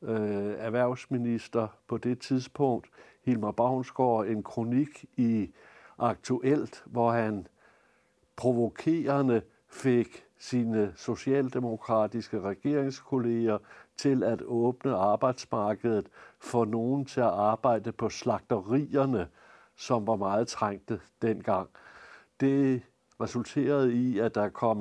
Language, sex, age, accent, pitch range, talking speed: Danish, male, 60-79, native, 110-130 Hz, 95 wpm